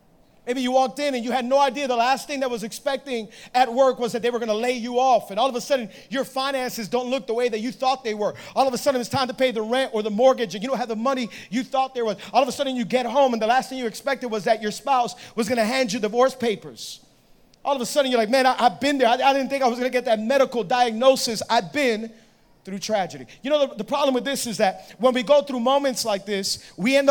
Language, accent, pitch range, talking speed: English, American, 225-275 Hz, 295 wpm